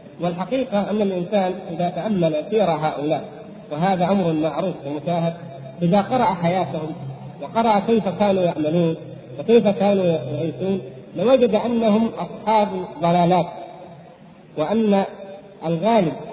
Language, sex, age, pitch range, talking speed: Arabic, male, 50-69, 170-220 Hz, 100 wpm